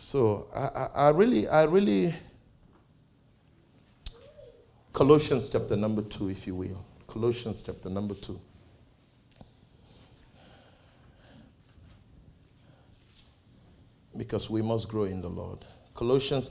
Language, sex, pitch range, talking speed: English, male, 100-120 Hz, 95 wpm